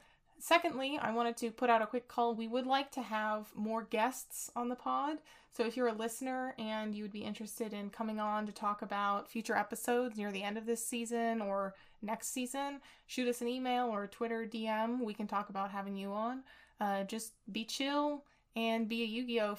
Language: English